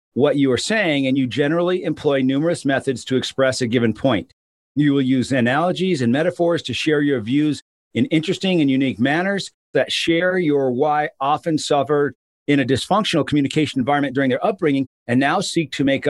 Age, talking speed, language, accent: 50-69, 185 wpm, English, American